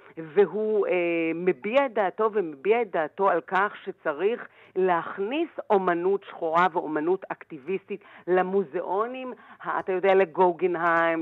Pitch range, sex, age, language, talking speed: 165-210 Hz, female, 50-69, Hebrew, 100 wpm